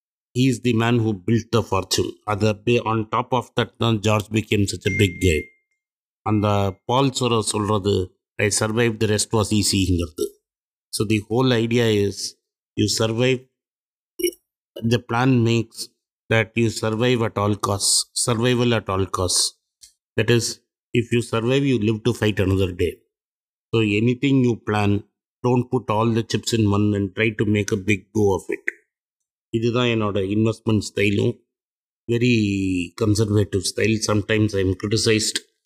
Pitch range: 105-120 Hz